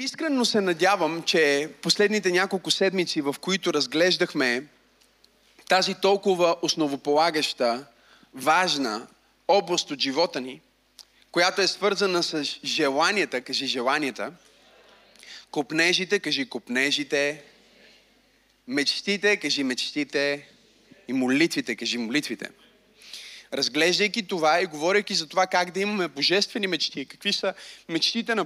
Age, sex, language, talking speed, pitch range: 30-49, male, Bulgarian, 105 wpm, 155-205 Hz